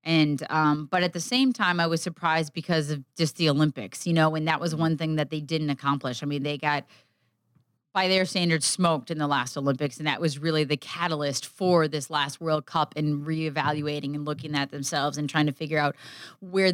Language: English